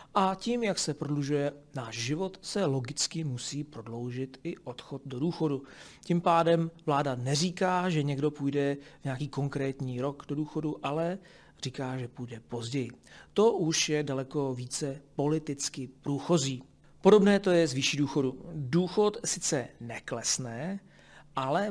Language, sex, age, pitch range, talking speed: Czech, male, 40-59, 130-170 Hz, 140 wpm